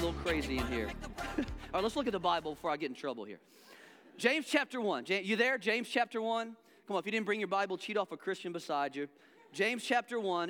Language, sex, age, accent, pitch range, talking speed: English, male, 40-59, American, 180-250 Hz, 245 wpm